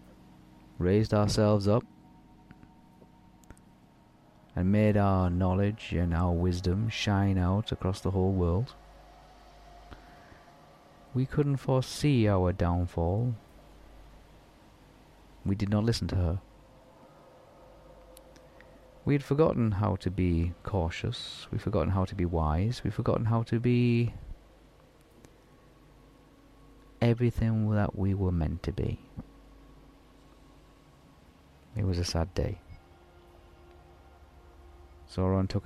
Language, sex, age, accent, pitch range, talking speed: English, male, 40-59, British, 85-115 Hz, 100 wpm